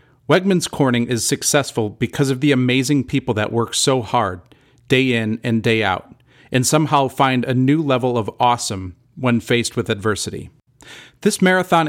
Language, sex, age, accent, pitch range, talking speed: English, male, 40-59, American, 115-145 Hz, 160 wpm